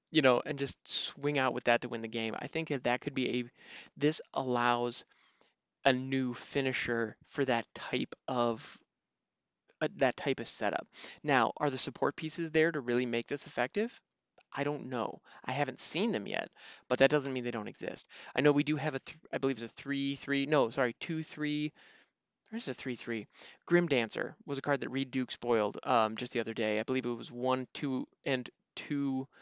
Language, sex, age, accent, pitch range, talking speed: English, male, 20-39, American, 120-150 Hz, 205 wpm